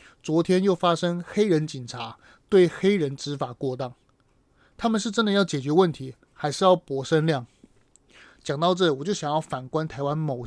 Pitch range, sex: 140-185 Hz, male